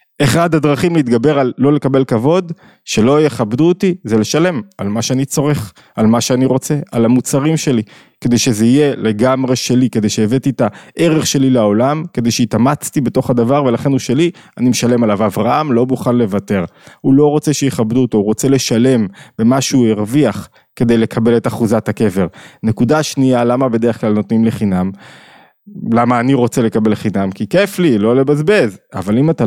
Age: 20-39